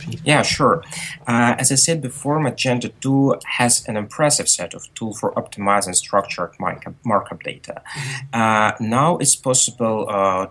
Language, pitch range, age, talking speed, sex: English, 105-135 Hz, 30-49, 150 wpm, male